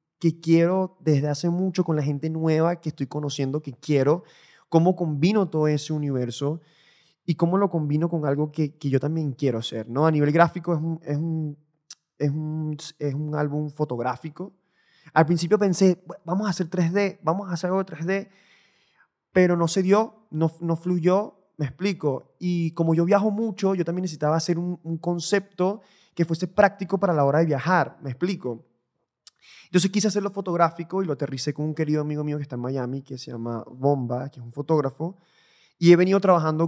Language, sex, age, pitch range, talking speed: English, male, 20-39, 145-180 Hz, 190 wpm